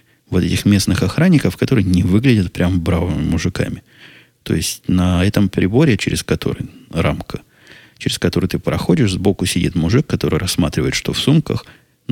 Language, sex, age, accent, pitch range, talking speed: Russian, male, 20-39, native, 85-105 Hz, 155 wpm